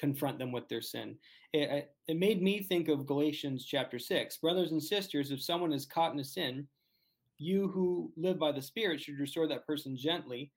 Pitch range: 135-165 Hz